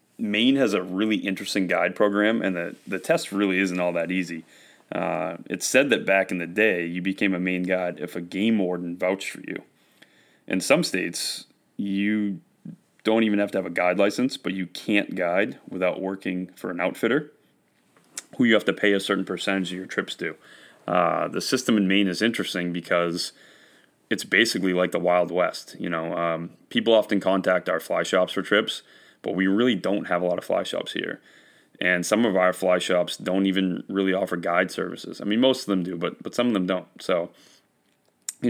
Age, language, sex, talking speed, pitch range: 30-49, English, male, 205 wpm, 90-100 Hz